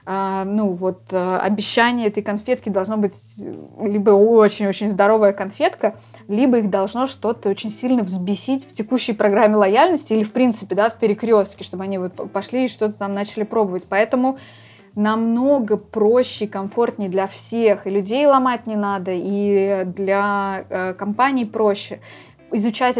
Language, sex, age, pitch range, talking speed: Russian, female, 20-39, 200-230 Hz, 140 wpm